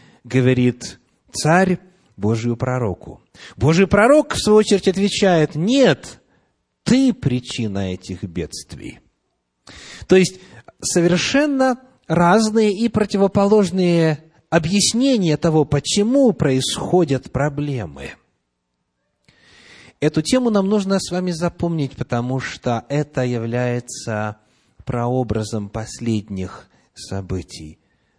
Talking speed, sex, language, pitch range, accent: 85 wpm, male, Russian, 115-185 Hz, native